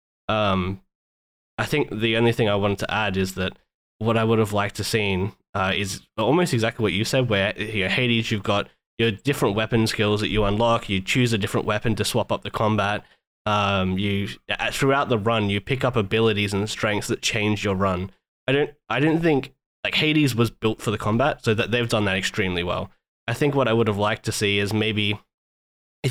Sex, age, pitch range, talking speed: male, 10-29, 100-120 Hz, 220 wpm